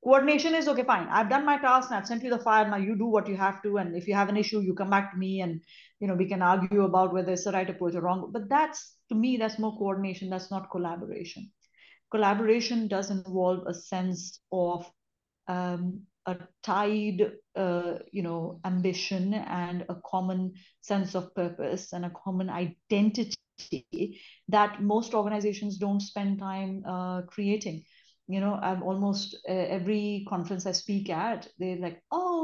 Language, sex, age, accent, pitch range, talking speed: English, female, 30-49, Indian, 185-220 Hz, 180 wpm